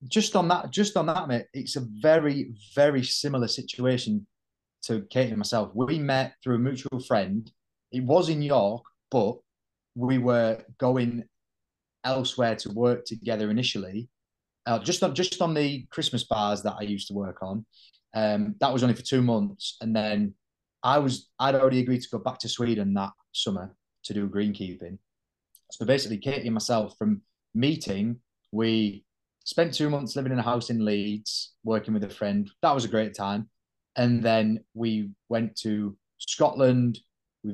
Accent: British